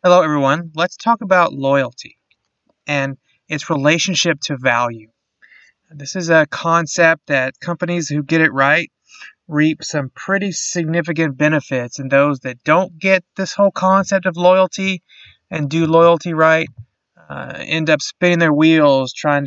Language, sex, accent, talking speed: English, male, American, 145 wpm